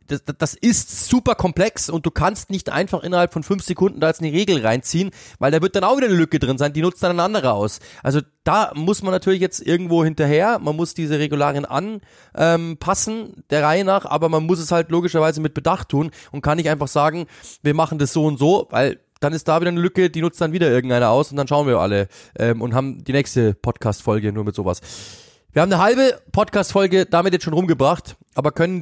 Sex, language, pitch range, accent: male, German, 135-175 Hz, German